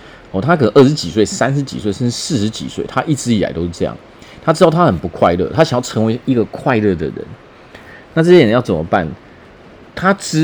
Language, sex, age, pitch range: Chinese, male, 30-49, 95-140 Hz